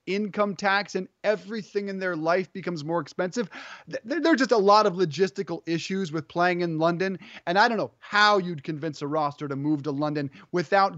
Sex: male